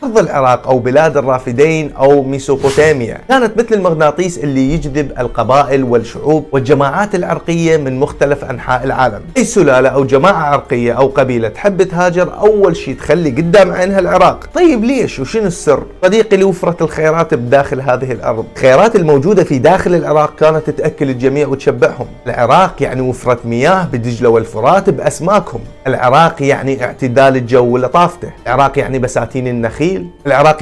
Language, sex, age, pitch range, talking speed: Arabic, male, 30-49, 125-165 Hz, 140 wpm